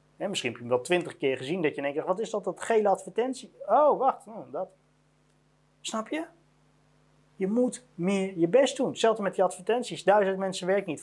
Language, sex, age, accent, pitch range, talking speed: Dutch, male, 30-49, Dutch, 160-215 Hz, 195 wpm